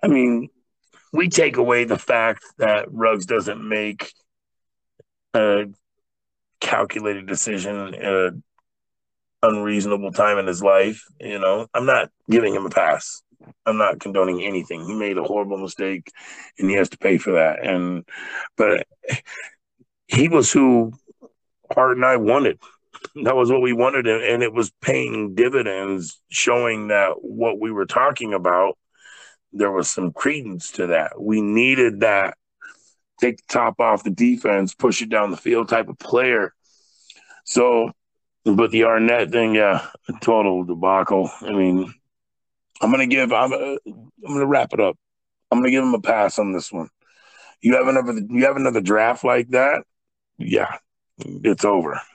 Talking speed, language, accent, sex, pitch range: 160 wpm, English, American, male, 100-130 Hz